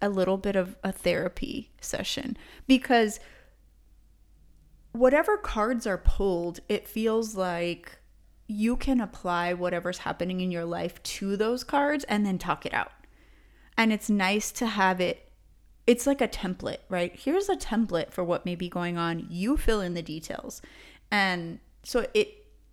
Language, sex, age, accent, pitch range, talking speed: English, female, 30-49, American, 175-225 Hz, 155 wpm